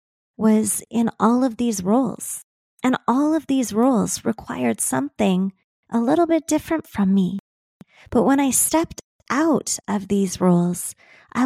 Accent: American